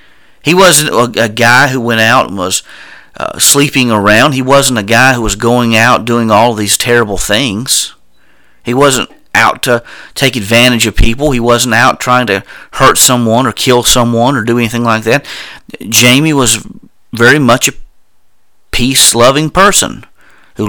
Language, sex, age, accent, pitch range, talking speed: English, male, 40-59, American, 115-135 Hz, 160 wpm